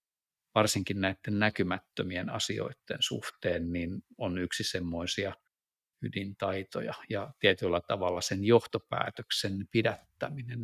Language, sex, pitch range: Finnish, male, 95-120 Hz